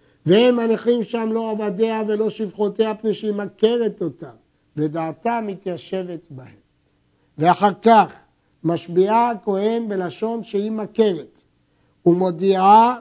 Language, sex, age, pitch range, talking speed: Hebrew, male, 60-79, 175-215 Hz, 100 wpm